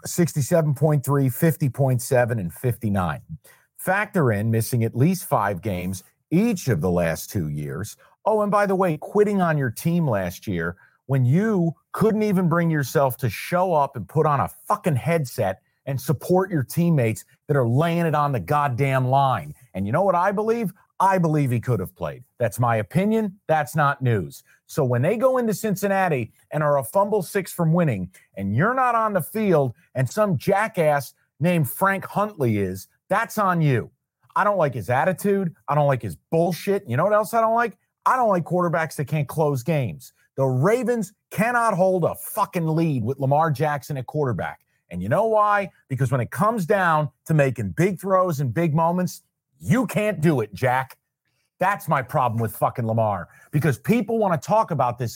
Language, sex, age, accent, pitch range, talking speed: English, male, 40-59, American, 130-185 Hz, 185 wpm